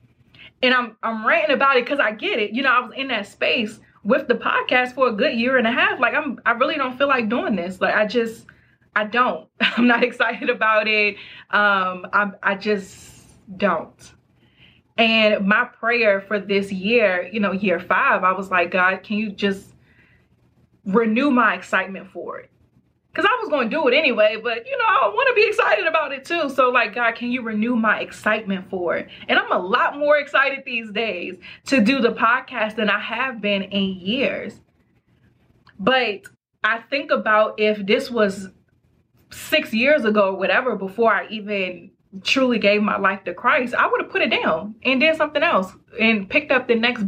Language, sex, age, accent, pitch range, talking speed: English, female, 30-49, American, 200-255 Hz, 200 wpm